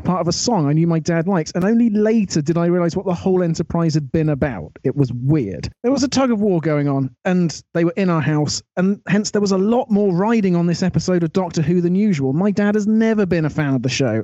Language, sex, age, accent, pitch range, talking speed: English, male, 30-49, British, 155-215 Hz, 265 wpm